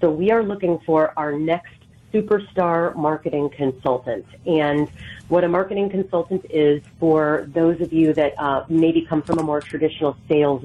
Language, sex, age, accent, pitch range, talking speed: English, female, 30-49, American, 145-170 Hz, 165 wpm